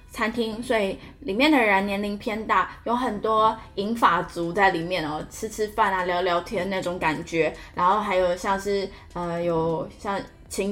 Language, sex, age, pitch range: Chinese, female, 10-29, 185-230 Hz